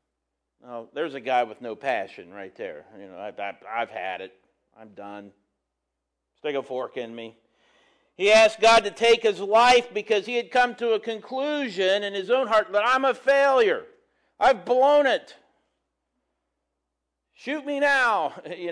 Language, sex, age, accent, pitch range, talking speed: English, male, 50-69, American, 135-220 Hz, 165 wpm